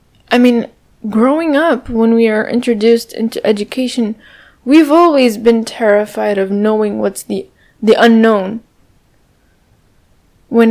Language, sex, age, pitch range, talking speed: English, female, 10-29, 215-255 Hz, 120 wpm